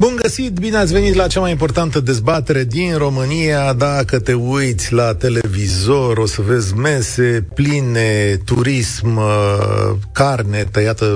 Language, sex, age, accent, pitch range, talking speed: Romanian, male, 40-59, native, 110-140 Hz, 135 wpm